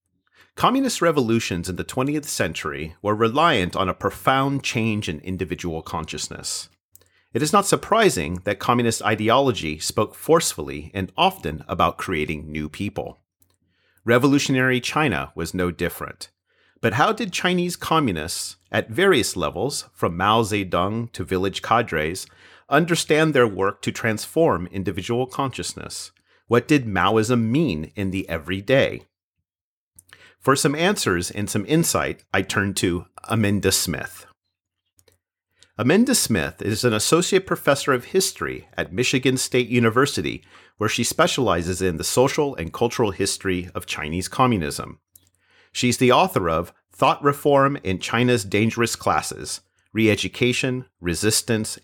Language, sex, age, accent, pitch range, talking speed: English, male, 40-59, American, 90-130 Hz, 125 wpm